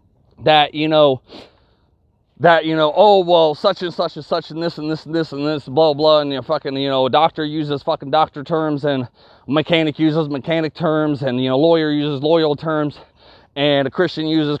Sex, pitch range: male, 135-175 Hz